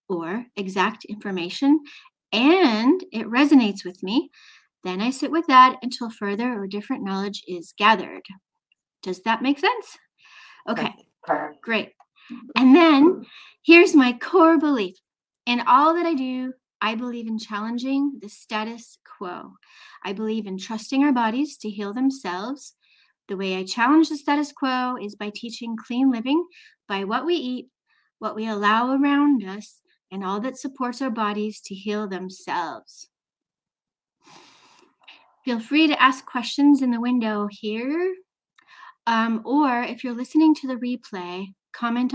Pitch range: 210-290 Hz